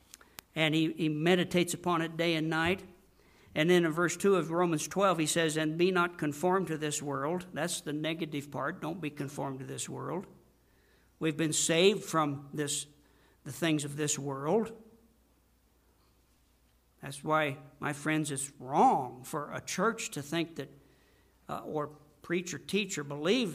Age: 60-79